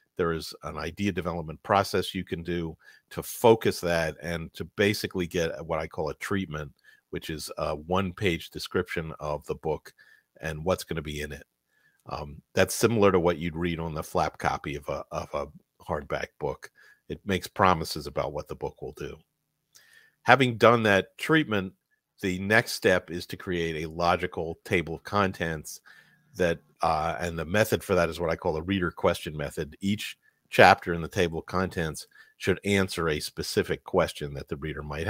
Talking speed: 185 wpm